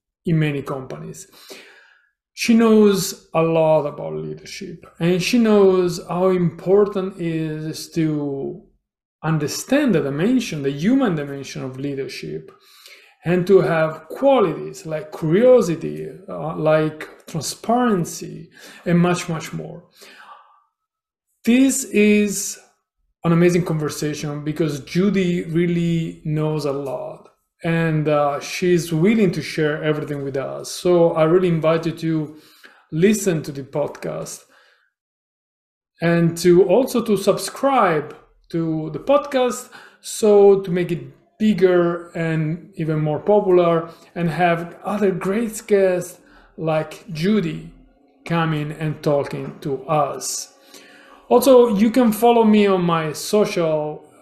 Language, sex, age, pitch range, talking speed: English, male, 30-49, 155-195 Hz, 115 wpm